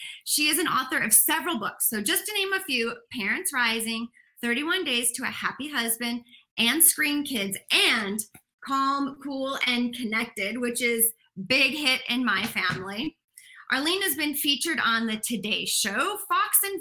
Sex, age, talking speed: female, 20-39, 170 wpm